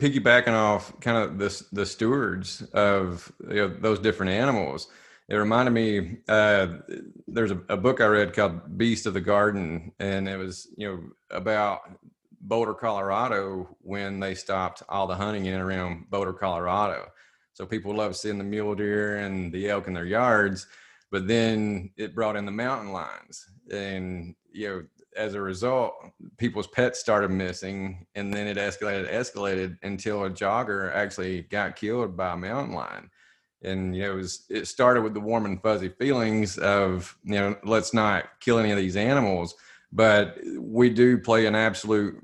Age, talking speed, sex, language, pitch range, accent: 30-49, 170 wpm, male, English, 95-110 Hz, American